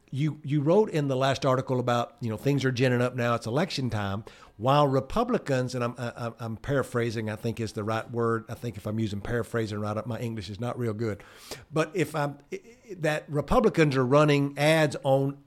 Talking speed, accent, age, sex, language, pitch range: 210 wpm, American, 50-69, male, English, 120-155 Hz